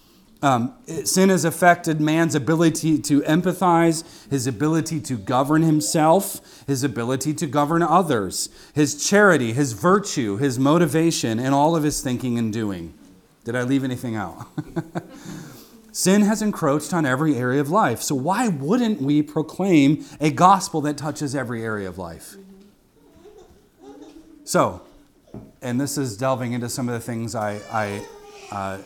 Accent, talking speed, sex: American, 145 wpm, male